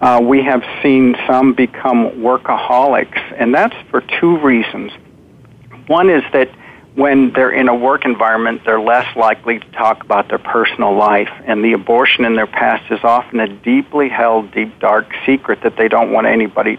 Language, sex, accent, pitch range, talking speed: English, male, American, 115-135 Hz, 175 wpm